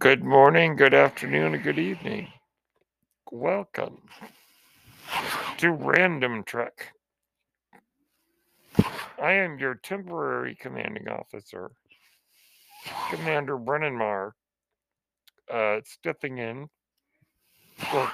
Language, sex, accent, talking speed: English, male, American, 80 wpm